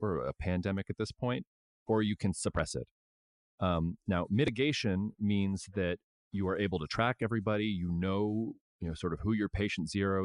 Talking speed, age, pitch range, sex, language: 185 wpm, 30-49, 80-100 Hz, male, English